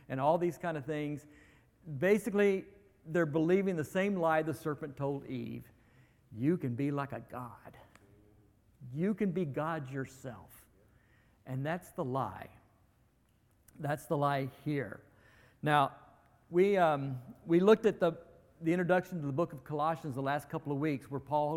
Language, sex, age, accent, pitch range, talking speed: English, male, 50-69, American, 135-185 Hz, 155 wpm